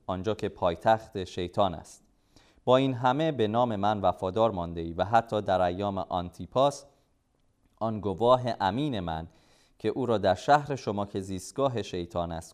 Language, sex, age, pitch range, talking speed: Persian, male, 30-49, 90-125 Hz, 165 wpm